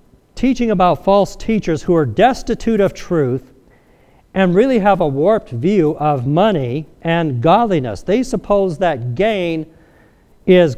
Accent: American